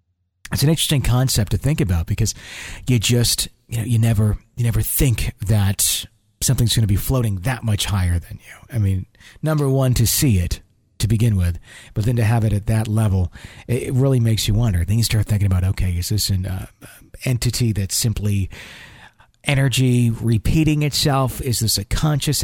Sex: male